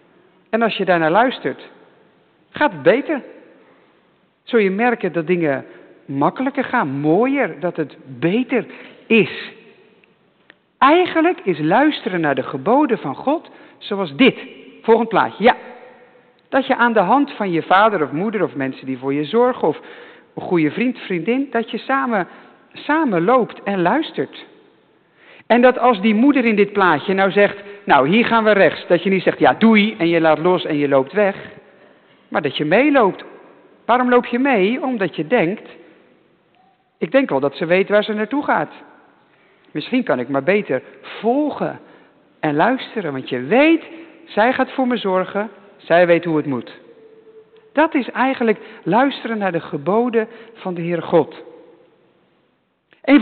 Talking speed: 160 wpm